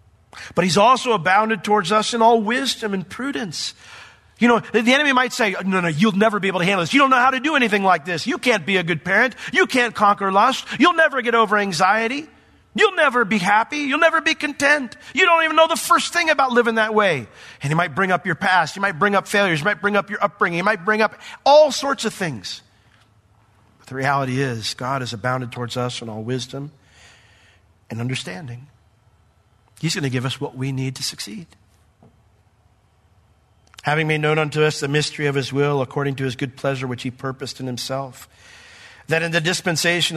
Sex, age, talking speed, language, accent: male, 40-59, 215 wpm, English, American